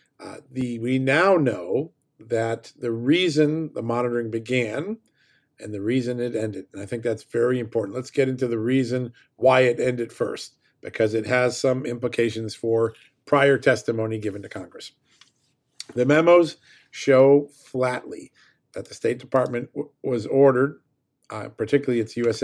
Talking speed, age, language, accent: 145 wpm, 50-69, English, American